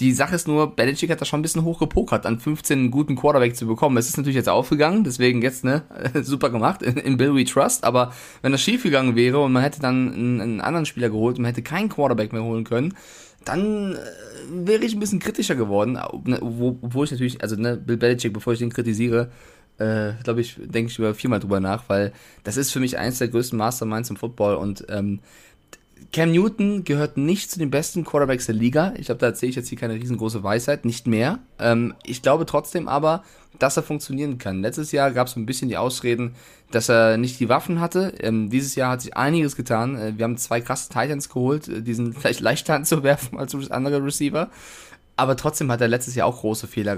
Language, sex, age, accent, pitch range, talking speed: German, male, 20-39, German, 115-150 Hz, 225 wpm